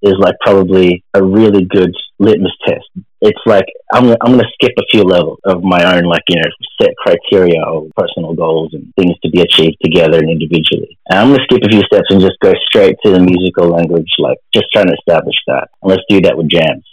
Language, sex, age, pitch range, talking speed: English, male, 30-49, 85-105 Hz, 230 wpm